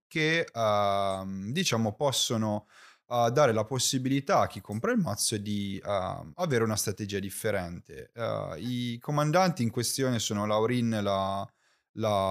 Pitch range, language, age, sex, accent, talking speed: 105-140 Hz, Italian, 30-49, male, native, 115 wpm